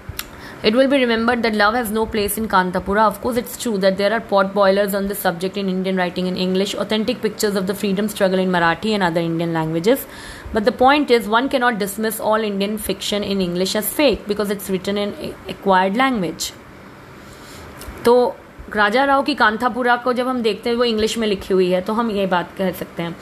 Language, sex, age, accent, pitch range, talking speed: English, female, 20-39, Indian, 195-235 Hz, 190 wpm